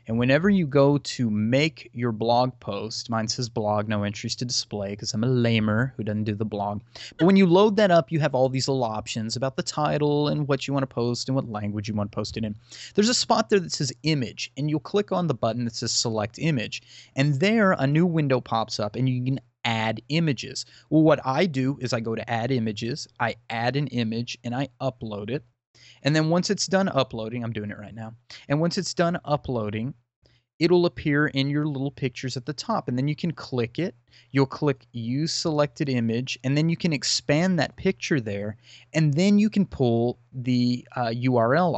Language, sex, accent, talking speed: English, male, American, 225 wpm